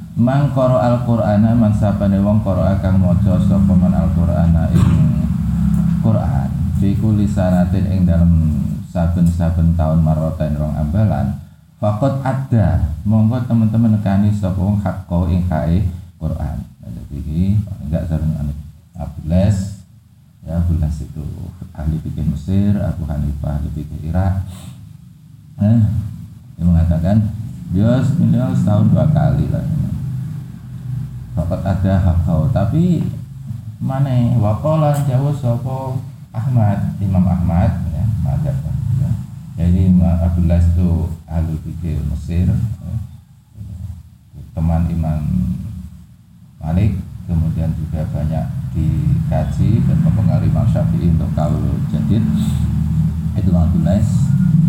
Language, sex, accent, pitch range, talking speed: Indonesian, male, native, 85-120 Hz, 100 wpm